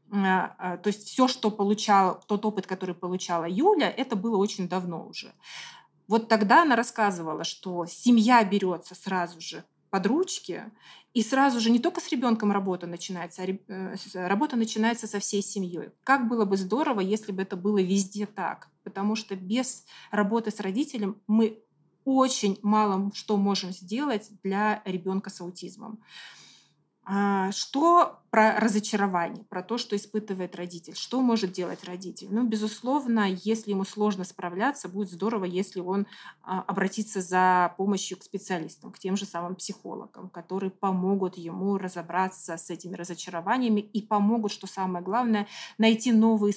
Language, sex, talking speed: Russian, female, 145 wpm